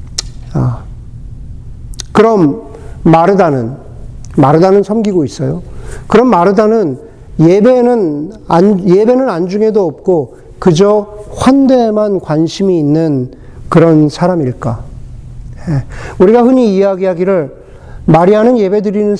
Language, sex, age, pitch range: Korean, male, 50-69, 135-220 Hz